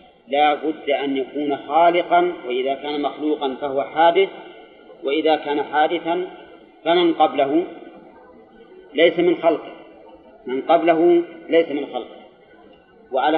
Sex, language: male, Arabic